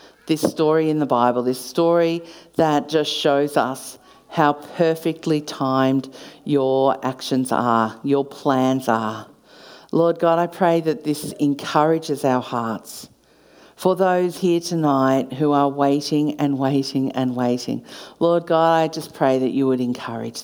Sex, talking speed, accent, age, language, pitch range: female, 145 wpm, Australian, 50-69, English, 135-160 Hz